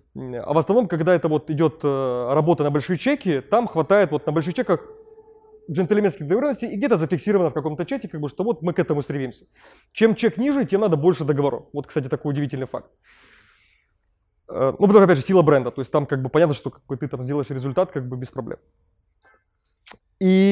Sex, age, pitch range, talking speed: male, 20-39, 135-190 Hz, 200 wpm